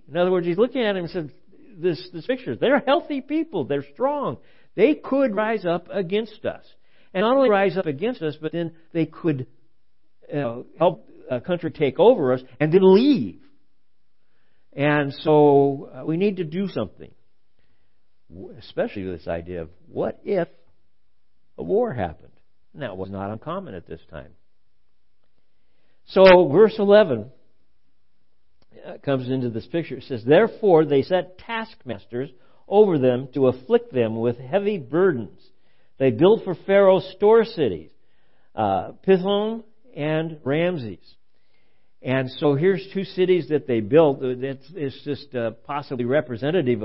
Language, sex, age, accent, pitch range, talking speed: English, male, 60-79, American, 125-195 Hz, 145 wpm